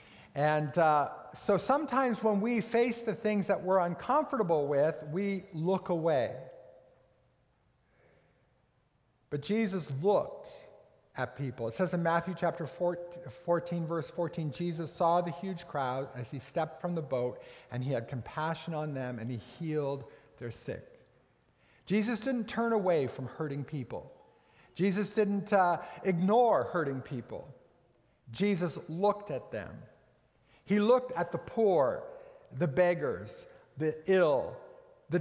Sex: male